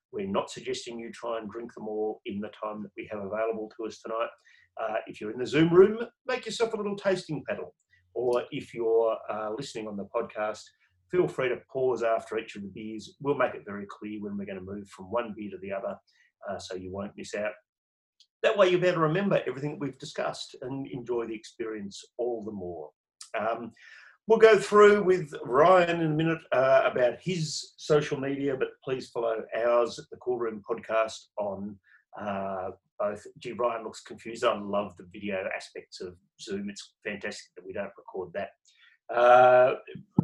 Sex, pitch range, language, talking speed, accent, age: male, 110-180 Hz, English, 195 wpm, Australian, 40-59